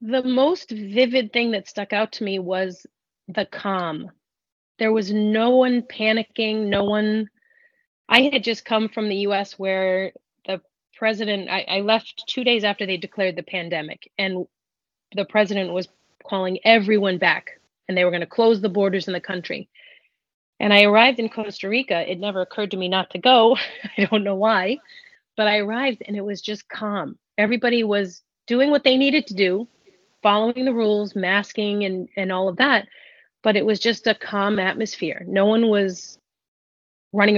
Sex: female